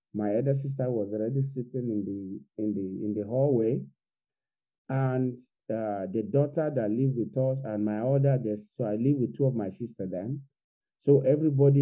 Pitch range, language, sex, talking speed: 105-140 Hz, English, male, 180 wpm